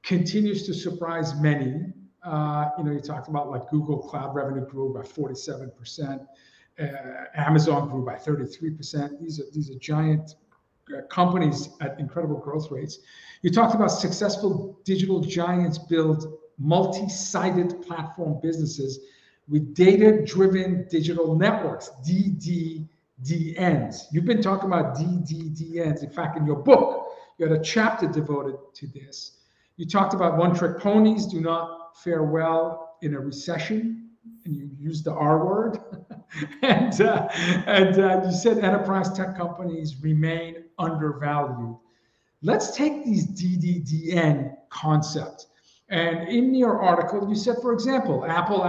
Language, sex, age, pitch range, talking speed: English, male, 50-69, 155-195 Hz, 135 wpm